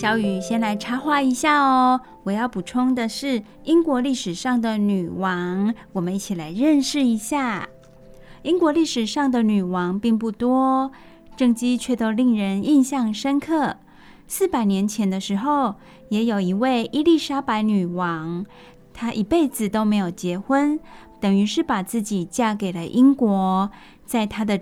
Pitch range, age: 195-260 Hz, 20-39